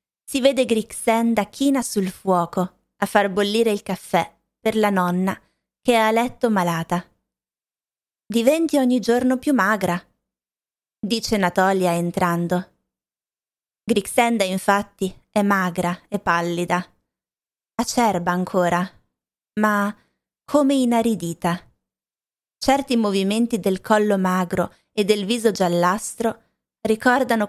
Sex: female